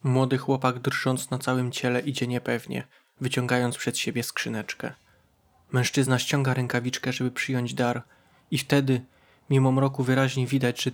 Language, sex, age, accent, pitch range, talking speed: Polish, male, 20-39, native, 125-135 Hz, 135 wpm